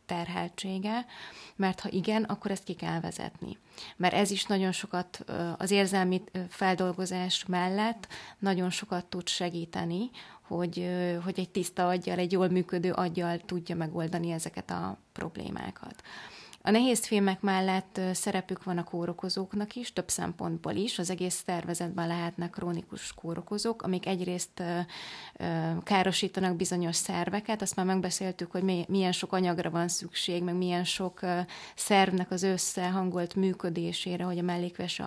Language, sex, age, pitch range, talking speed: Hungarian, female, 20-39, 180-195 Hz, 140 wpm